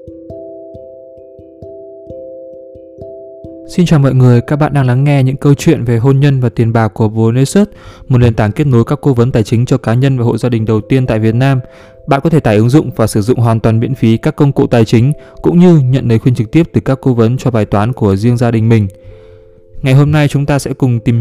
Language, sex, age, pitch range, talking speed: Vietnamese, male, 20-39, 110-140 Hz, 245 wpm